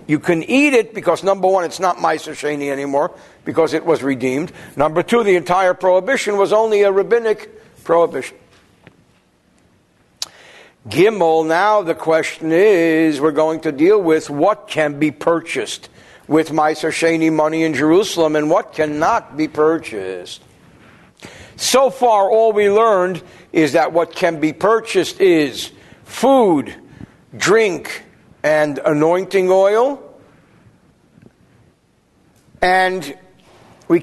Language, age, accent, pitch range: English, 60-79, American, 155-215 Hz